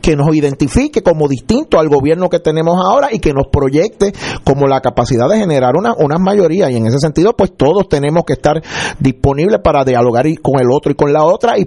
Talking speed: 215 wpm